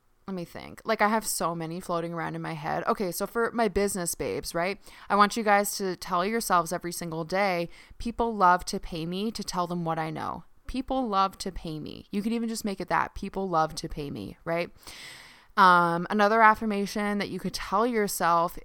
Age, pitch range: 20-39, 170-200 Hz